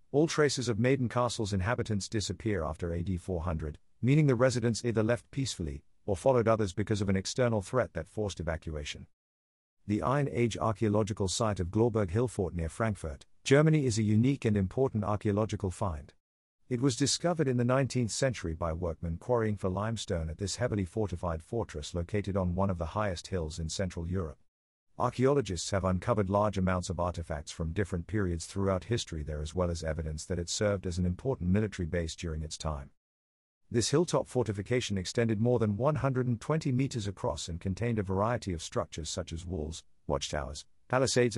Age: 50-69